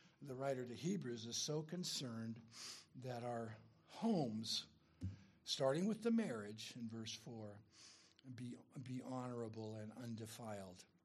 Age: 60-79